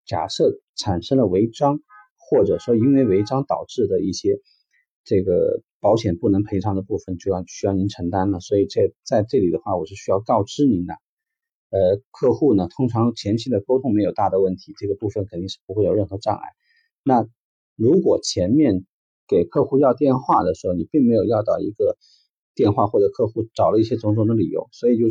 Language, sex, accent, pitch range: Chinese, male, native, 100-140 Hz